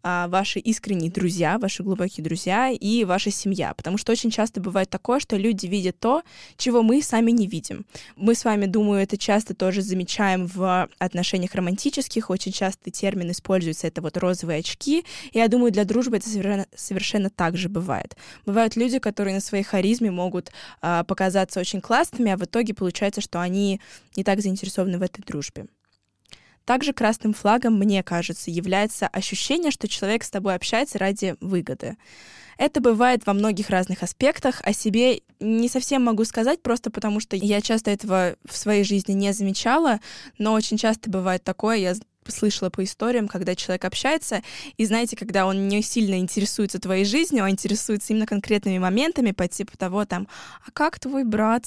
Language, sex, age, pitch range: Russian, female, 10-29, 185-230 Hz